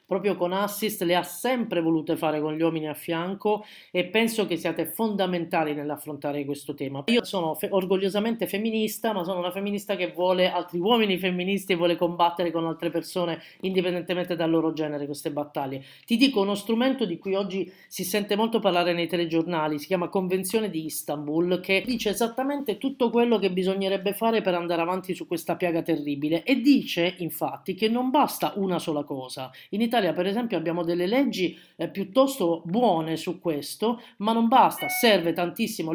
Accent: native